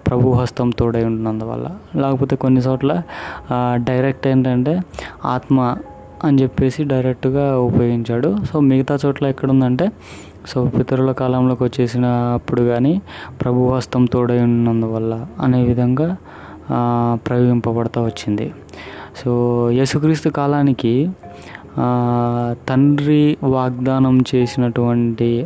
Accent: native